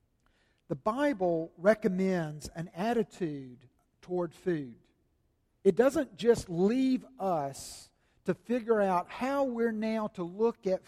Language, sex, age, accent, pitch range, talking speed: English, male, 50-69, American, 170-225 Hz, 115 wpm